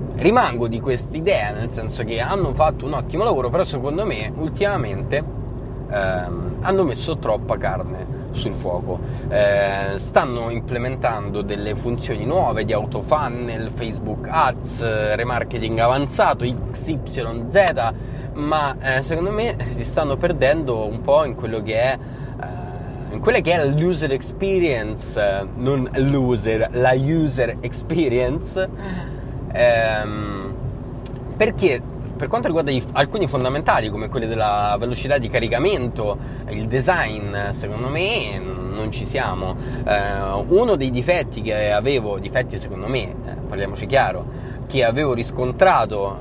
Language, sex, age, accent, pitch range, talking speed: Italian, male, 20-39, native, 110-130 Hz, 125 wpm